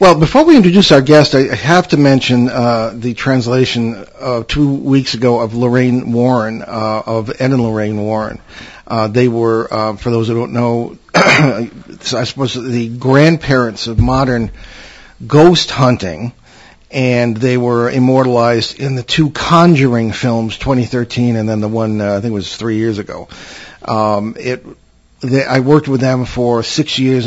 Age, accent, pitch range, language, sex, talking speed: 50-69, American, 110-130 Hz, English, male, 165 wpm